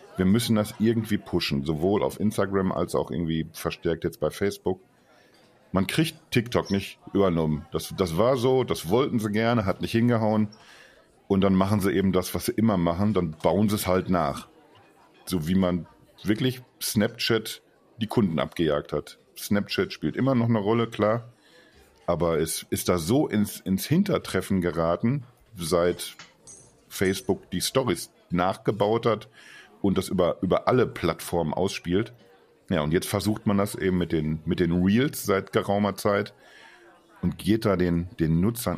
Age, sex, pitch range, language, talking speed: 50-69, male, 90-115 Hz, German, 160 wpm